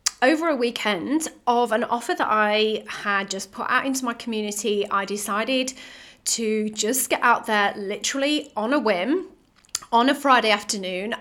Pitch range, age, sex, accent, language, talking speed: 205-260 Hz, 30-49, female, British, English, 160 wpm